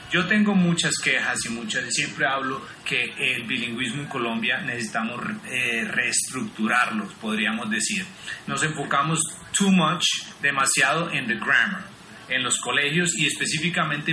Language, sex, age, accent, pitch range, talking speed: Spanish, male, 30-49, Colombian, 150-190 Hz, 140 wpm